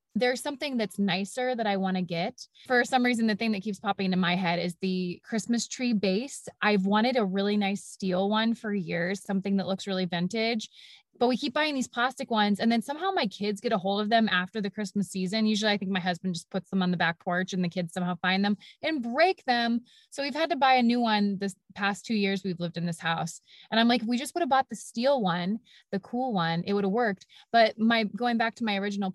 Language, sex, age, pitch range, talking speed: English, female, 20-39, 190-240 Hz, 255 wpm